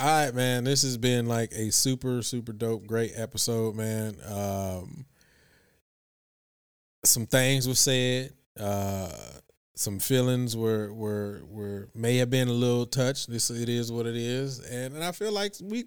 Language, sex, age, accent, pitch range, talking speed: English, male, 20-39, American, 115-140 Hz, 165 wpm